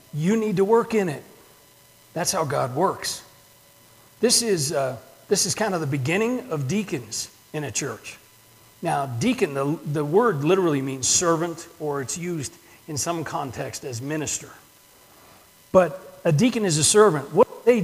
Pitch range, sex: 145-205 Hz, male